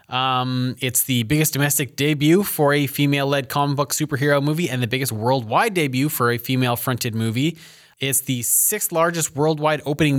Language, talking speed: English, 175 wpm